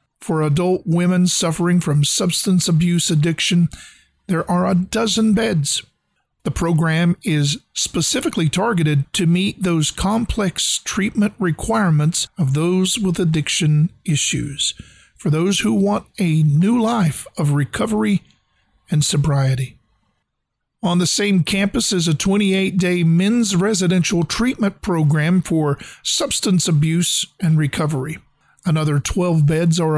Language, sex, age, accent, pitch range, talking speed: English, male, 50-69, American, 155-190 Hz, 120 wpm